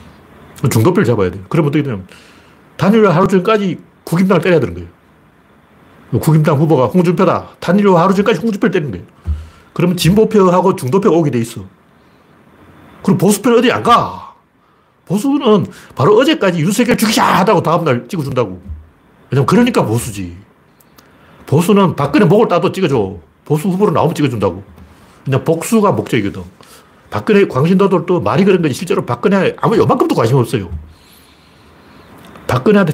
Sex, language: male, Korean